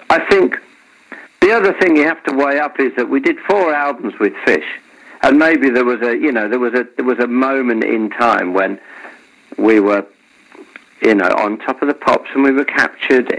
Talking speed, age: 215 wpm, 50-69